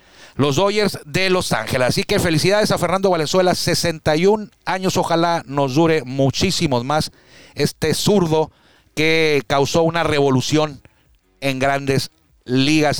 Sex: male